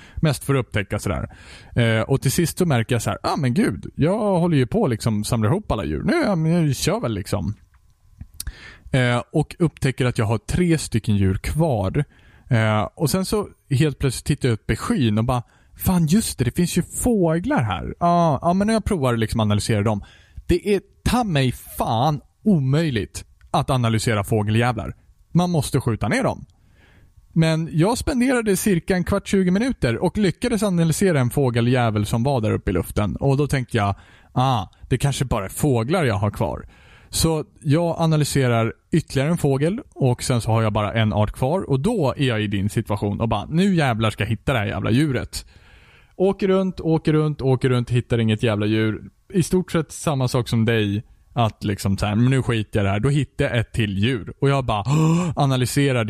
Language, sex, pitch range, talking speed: Swedish, male, 110-160 Hz, 205 wpm